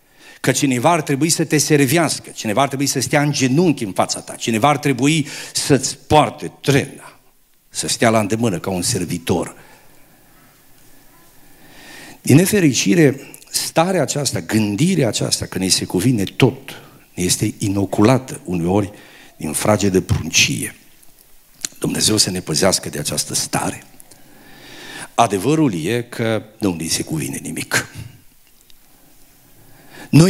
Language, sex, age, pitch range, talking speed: Romanian, male, 50-69, 115-155 Hz, 130 wpm